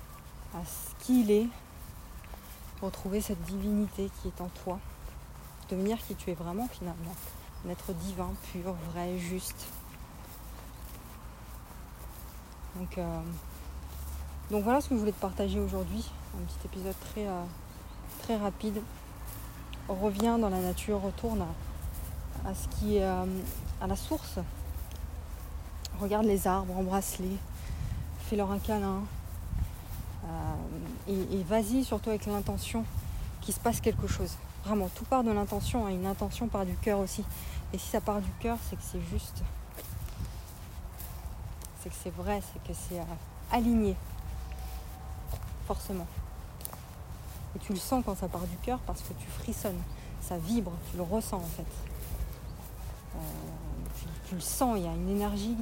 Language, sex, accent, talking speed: French, female, French, 150 wpm